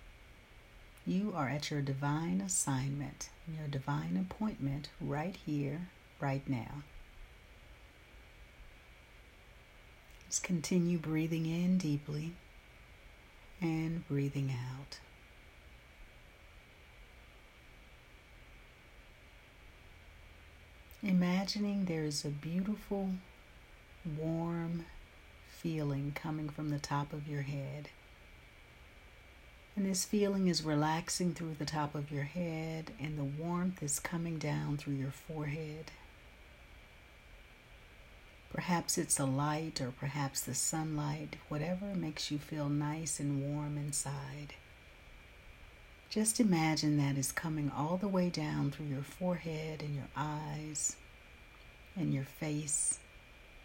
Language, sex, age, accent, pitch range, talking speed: English, female, 60-79, American, 95-160 Hz, 100 wpm